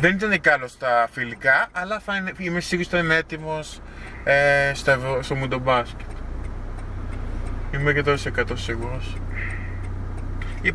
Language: Greek